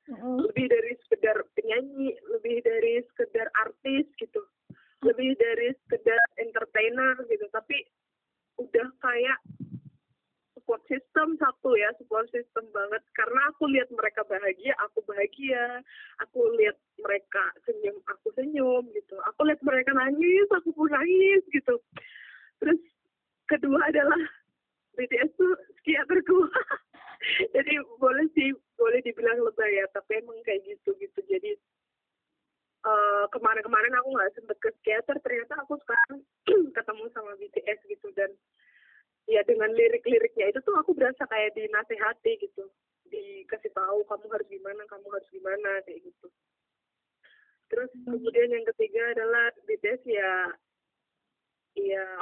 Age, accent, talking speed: 20-39, native, 125 wpm